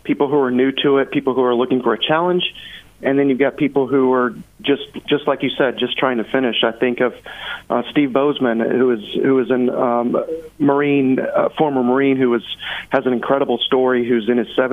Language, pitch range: English, 120-135 Hz